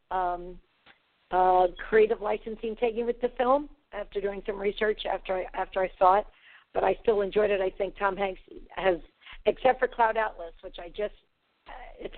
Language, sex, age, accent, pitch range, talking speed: English, female, 50-69, American, 185-220 Hz, 180 wpm